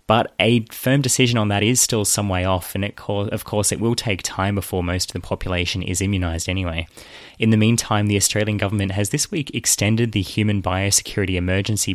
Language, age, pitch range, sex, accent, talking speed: English, 20-39, 90-105 Hz, male, Australian, 210 wpm